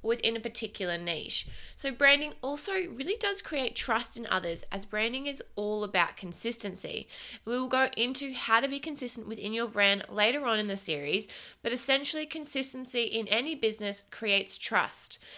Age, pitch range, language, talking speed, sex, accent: 20-39, 195-245 Hz, English, 170 wpm, female, Australian